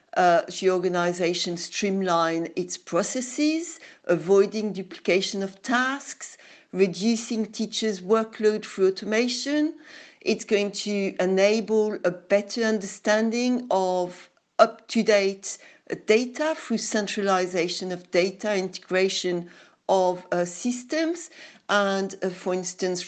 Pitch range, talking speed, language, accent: 185-225 Hz, 95 wpm, English, French